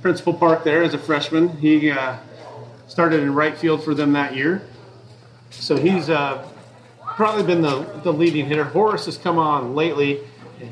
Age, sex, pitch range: 40-59, male, 135-165 Hz